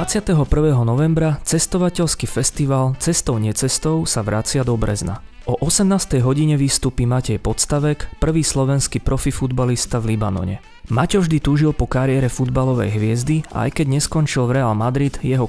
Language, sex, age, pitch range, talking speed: Slovak, male, 30-49, 120-150 Hz, 145 wpm